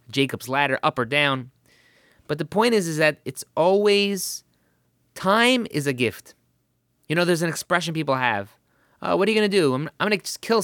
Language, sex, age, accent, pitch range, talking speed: English, male, 30-49, American, 150-220 Hz, 195 wpm